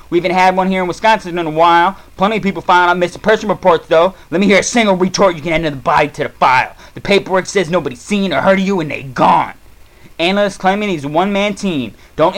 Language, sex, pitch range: English, male, 165-195 Hz